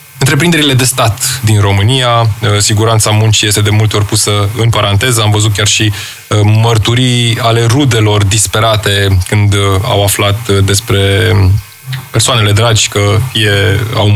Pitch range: 105-120 Hz